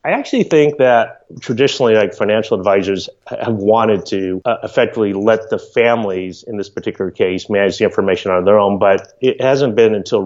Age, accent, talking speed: 30-49, American, 180 wpm